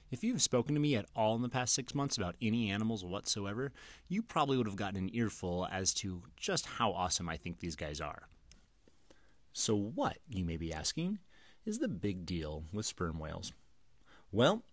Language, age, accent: English, 30-49, American